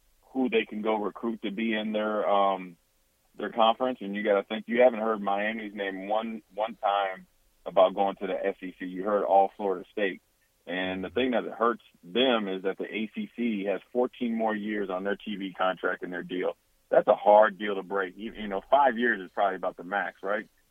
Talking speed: 215 wpm